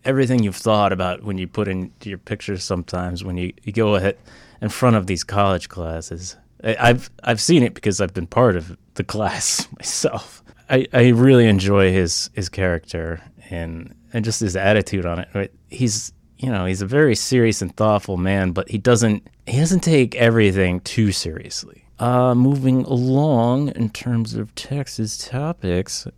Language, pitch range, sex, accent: English, 95-120 Hz, male, American